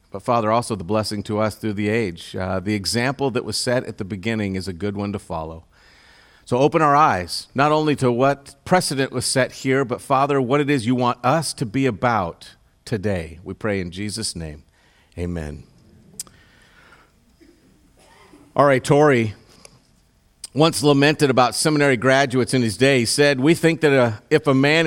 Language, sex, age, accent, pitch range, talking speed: English, male, 50-69, American, 110-160 Hz, 180 wpm